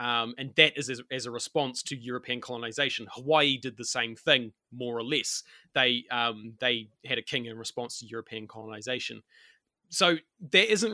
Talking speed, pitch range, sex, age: 180 wpm, 120-150 Hz, male, 20-39